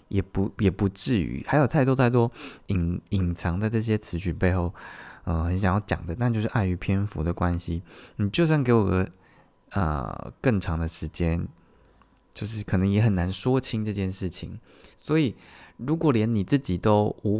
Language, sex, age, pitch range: Chinese, male, 20-39, 85-110 Hz